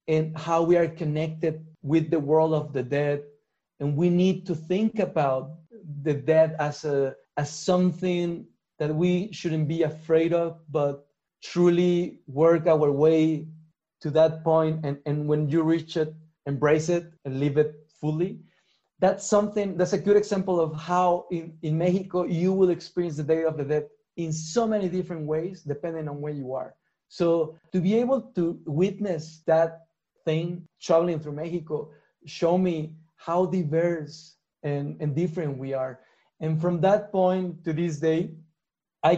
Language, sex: English, male